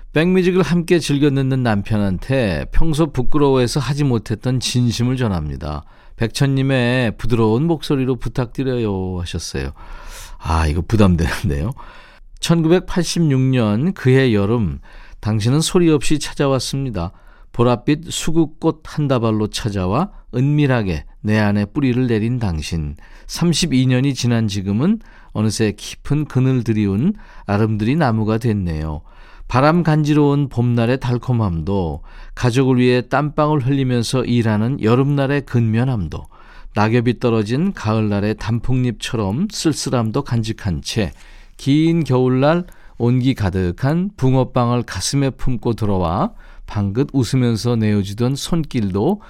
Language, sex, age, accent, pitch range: Korean, male, 40-59, native, 105-140 Hz